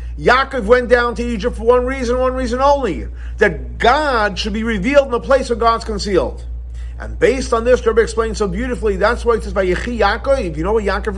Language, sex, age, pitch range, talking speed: English, male, 40-59, 160-245 Hz, 205 wpm